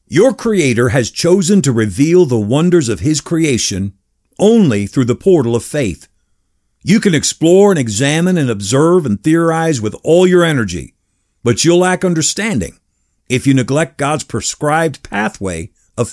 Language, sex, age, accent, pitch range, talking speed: English, male, 50-69, American, 120-170 Hz, 155 wpm